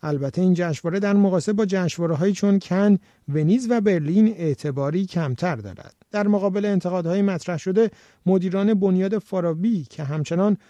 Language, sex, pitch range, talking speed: Persian, male, 155-200 Hz, 140 wpm